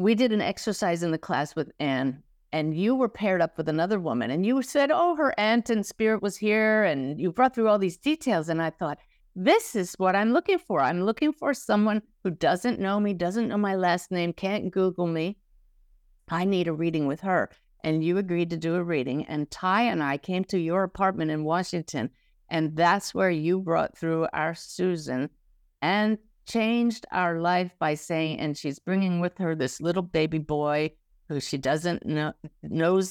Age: 50-69